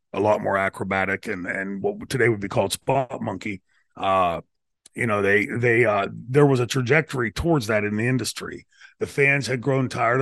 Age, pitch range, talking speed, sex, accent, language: 40-59, 100-135 Hz, 195 wpm, male, American, English